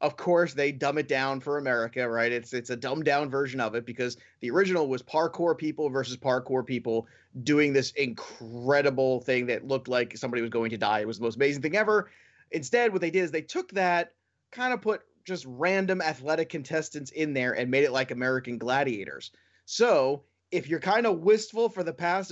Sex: male